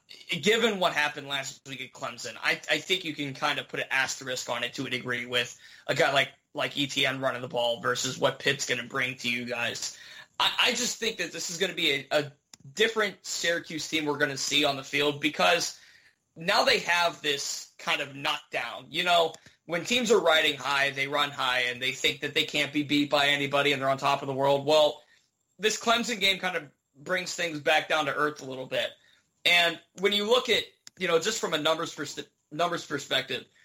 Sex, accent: male, American